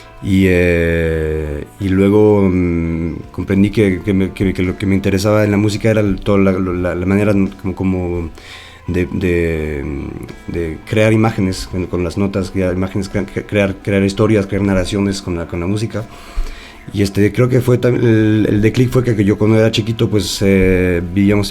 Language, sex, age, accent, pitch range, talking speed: Spanish, male, 30-49, Mexican, 90-105 Hz, 180 wpm